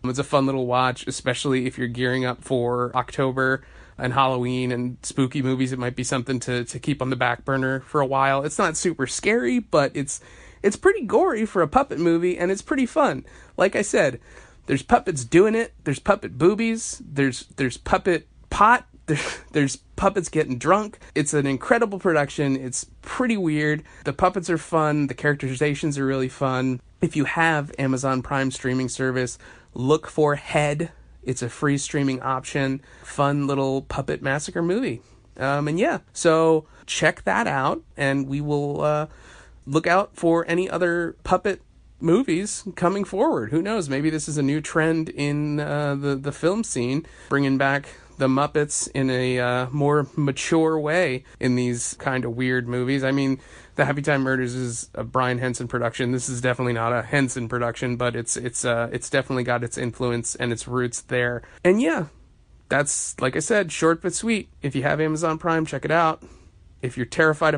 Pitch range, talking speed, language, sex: 125-155 Hz, 180 wpm, English, male